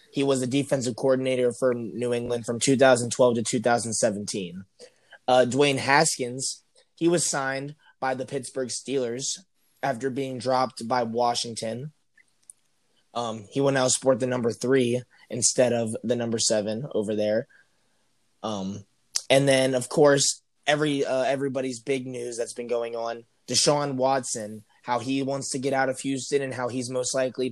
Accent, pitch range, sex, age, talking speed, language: American, 120-135 Hz, male, 20-39, 155 wpm, English